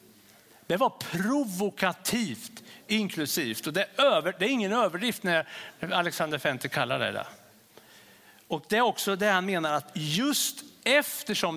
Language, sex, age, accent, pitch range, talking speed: English, male, 60-79, Norwegian, 155-235 Hz, 145 wpm